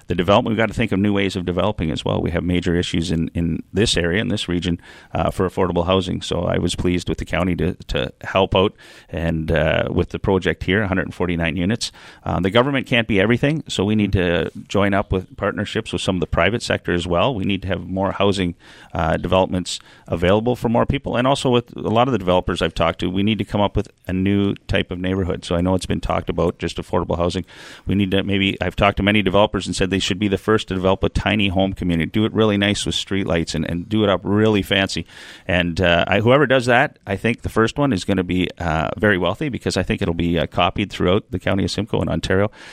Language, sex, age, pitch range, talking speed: English, male, 30-49, 90-105 Hz, 255 wpm